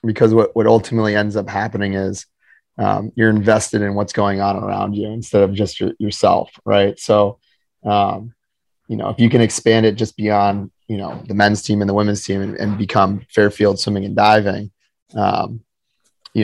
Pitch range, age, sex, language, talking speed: 100-115 Hz, 30-49, male, English, 190 wpm